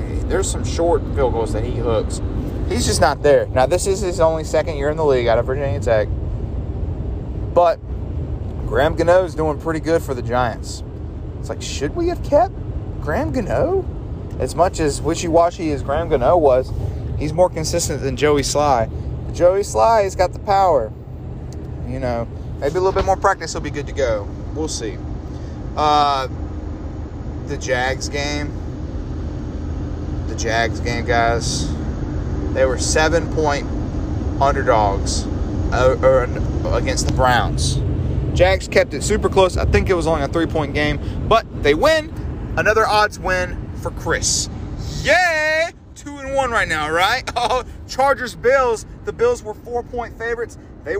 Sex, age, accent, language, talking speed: male, 30-49, American, English, 155 wpm